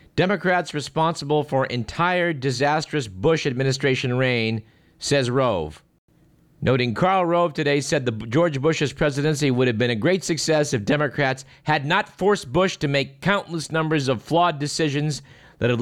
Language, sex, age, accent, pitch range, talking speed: English, male, 50-69, American, 115-150 Hz, 155 wpm